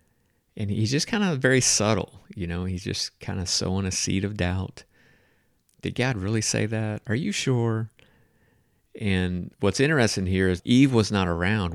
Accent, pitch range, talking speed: American, 85-100 Hz, 180 wpm